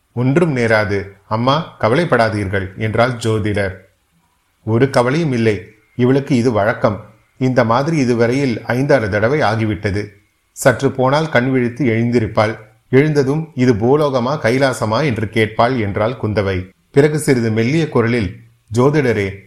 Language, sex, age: Tamil, male, 30-49